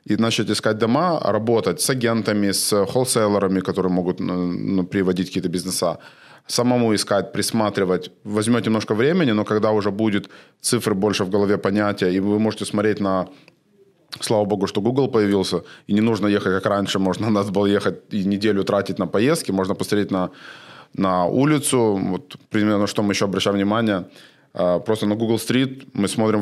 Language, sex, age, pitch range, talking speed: Russian, male, 20-39, 95-110 Hz, 170 wpm